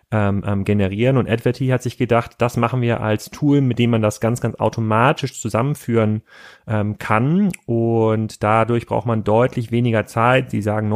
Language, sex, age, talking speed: German, male, 30-49, 170 wpm